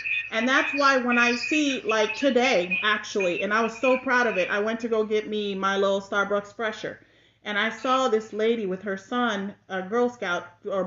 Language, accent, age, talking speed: English, American, 40-59, 210 wpm